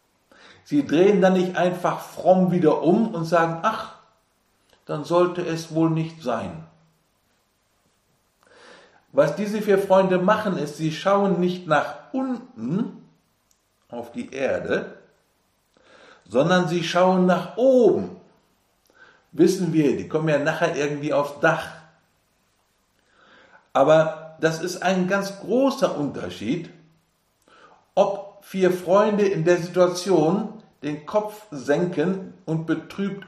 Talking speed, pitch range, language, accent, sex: 115 wpm, 160-195 Hz, German, German, male